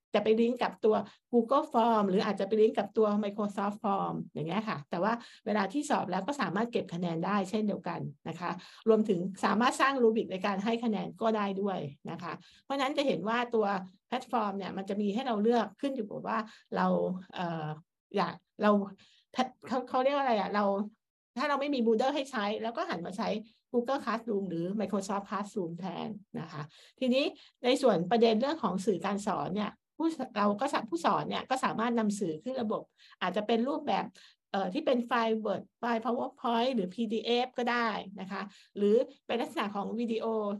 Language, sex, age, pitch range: Thai, female, 60-79, 195-240 Hz